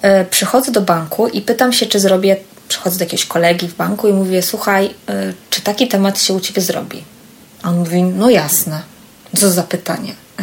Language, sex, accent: Polish, female, native